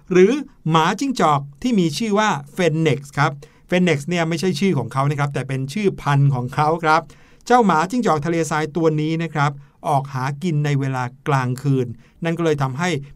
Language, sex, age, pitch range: Thai, male, 60-79, 145-185 Hz